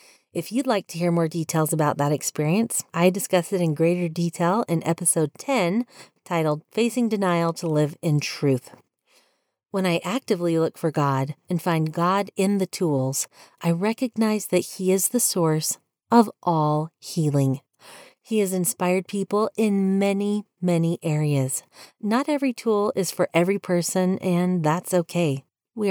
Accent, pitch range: American, 160-205 Hz